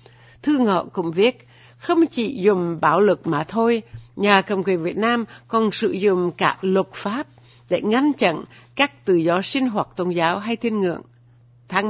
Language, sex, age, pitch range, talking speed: Vietnamese, female, 60-79, 165-230 Hz, 180 wpm